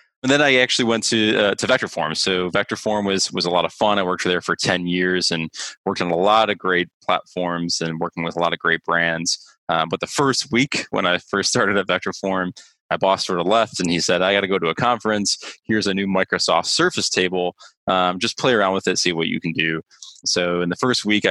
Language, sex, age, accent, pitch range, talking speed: English, male, 20-39, American, 85-100 Hz, 245 wpm